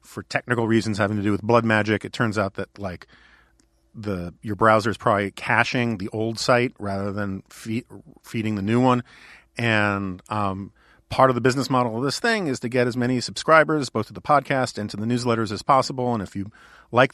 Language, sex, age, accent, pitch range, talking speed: English, male, 40-59, American, 100-120 Hz, 210 wpm